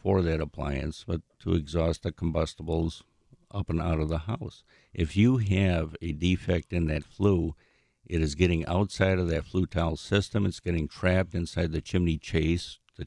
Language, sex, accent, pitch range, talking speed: English, male, American, 80-95 Hz, 180 wpm